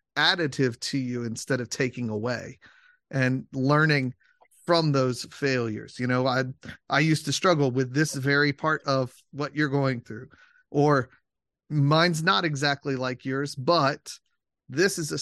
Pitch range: 130-155 Hz